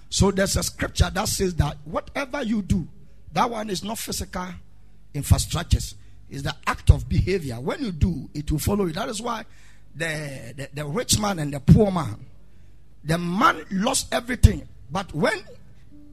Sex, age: male, 50-69